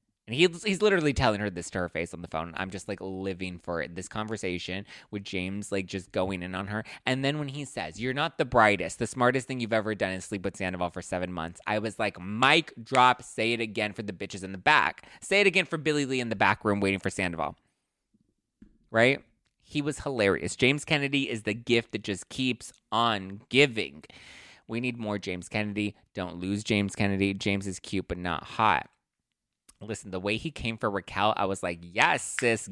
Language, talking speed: English, 220 wpm